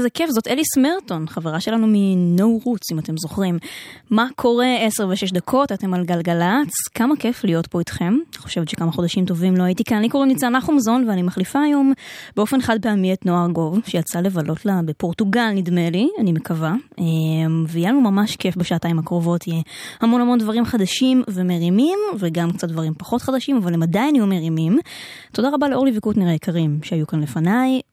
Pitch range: 175-255 Hz